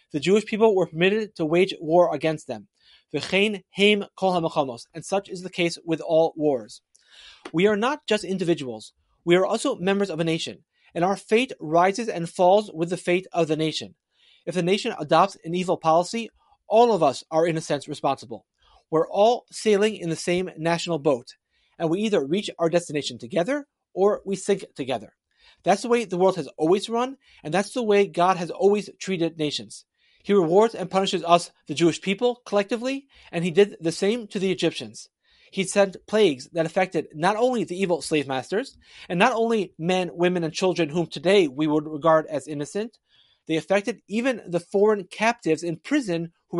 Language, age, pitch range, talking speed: English, 30-49, 160-200 Hz, 185 wpm